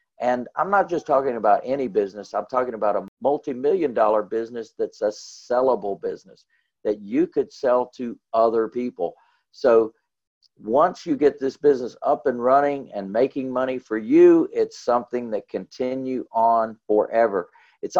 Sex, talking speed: male, 155 wpm